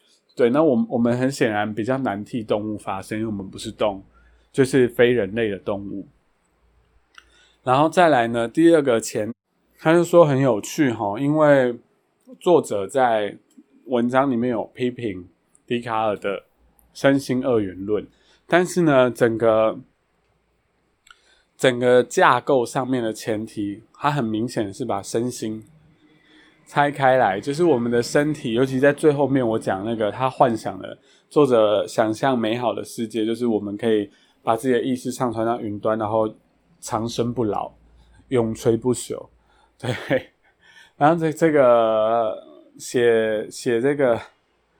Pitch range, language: 110-135 Hz, Chinese